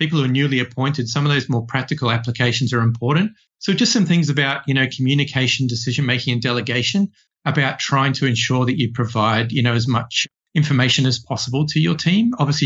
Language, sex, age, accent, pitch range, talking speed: English, male, 40-59, Australian, 120-155 Hz, 205 wpm